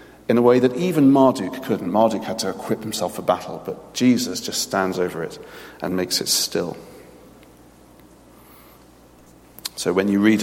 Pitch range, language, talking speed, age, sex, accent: 95-115 Hz, English, 160 wpm, 40-59, male, British